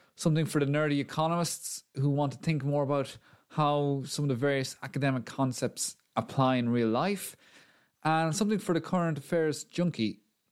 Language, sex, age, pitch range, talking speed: English, male, 30-49, 110-150 Hz, 165 wpm